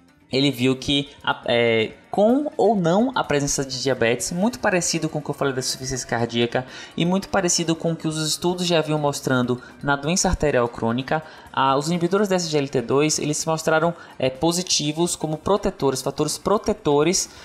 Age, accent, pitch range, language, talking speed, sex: 20-39, Brazilian, 125-160 Hz, Portuguese, 160 wpm, male